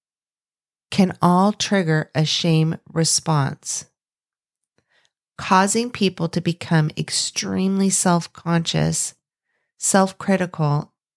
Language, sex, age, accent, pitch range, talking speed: English, female, 30-49, American, 150-180 Hz, 70 wpm